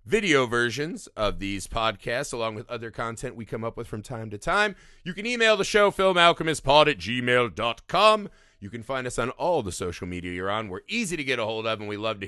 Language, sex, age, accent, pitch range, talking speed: English, male, 30-49, American, 110-175 Hz, 230 wpm